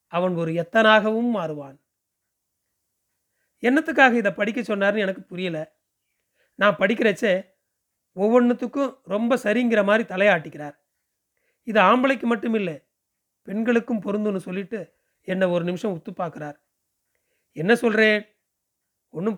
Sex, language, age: male, Tamil, 40-59